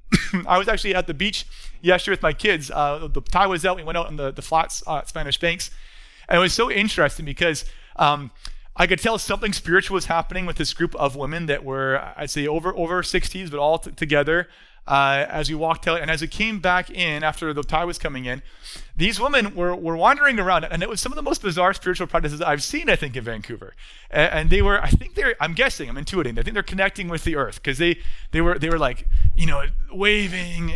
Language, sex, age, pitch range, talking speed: English, male, 30-49, 150-185 Hz, 240 wpm